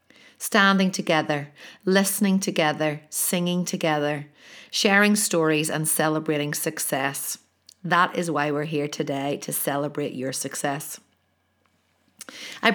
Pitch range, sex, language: 155-200 Hz, female, English